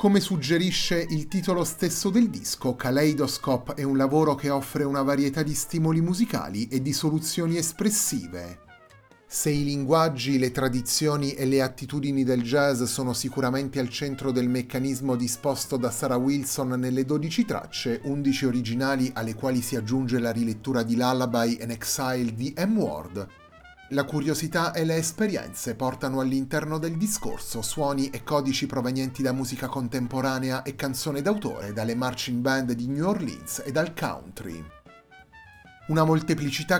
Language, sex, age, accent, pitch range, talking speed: Italian, male, 30-49, native, 125-150 Hz, 145 wpm